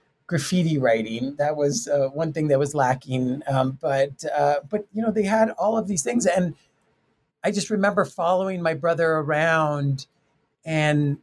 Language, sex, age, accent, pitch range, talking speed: English, male, 40-59, American, 140-175 Hz, 160 wpm